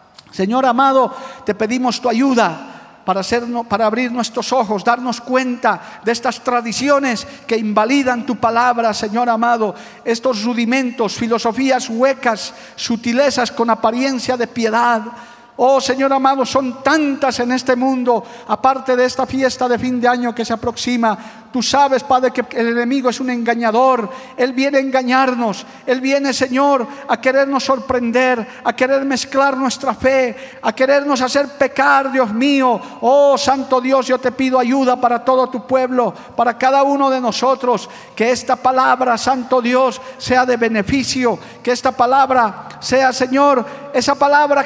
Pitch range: 235-265 Hz